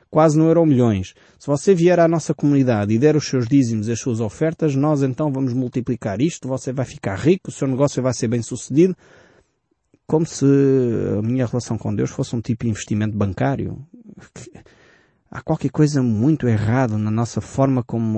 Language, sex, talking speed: Portuguese, male, 190 wpm